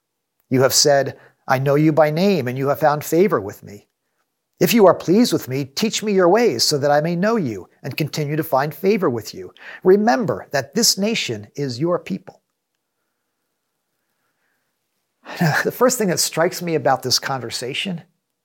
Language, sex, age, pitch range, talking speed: English, male, 50-69, 145-195 Hz, 175 wpm